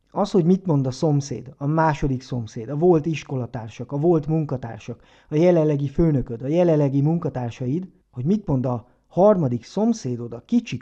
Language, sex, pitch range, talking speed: Hungarian, male, 130-180 Hz, 160 wpm